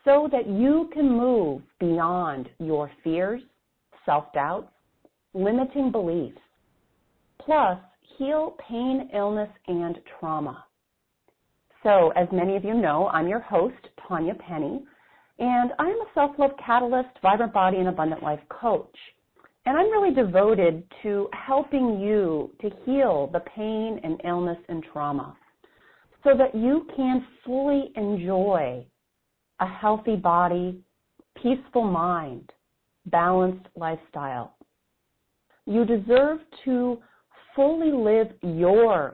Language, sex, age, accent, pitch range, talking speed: English, female, 40-59, American, 175-260 Hz, 110 wpm